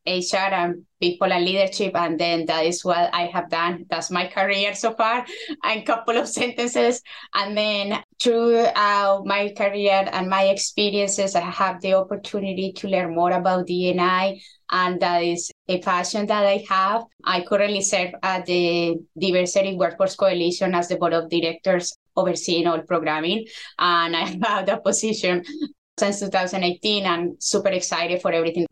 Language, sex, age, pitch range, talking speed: English, female, 20-39, 175-205 Hz, 160 wpm